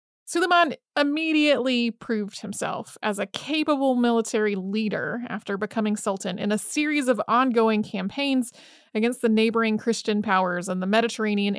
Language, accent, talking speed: English, American, 135 wpm